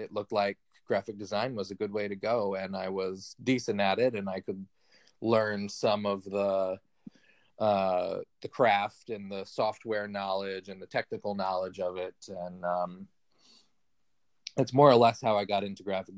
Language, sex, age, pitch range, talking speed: English, male, 30-49, 95-110 Hz, 180 wpm